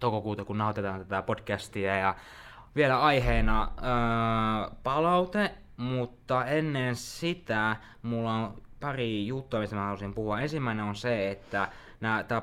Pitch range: 105-130 Hz